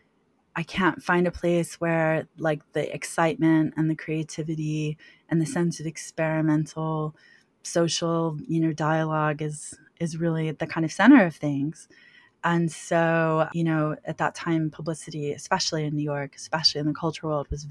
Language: English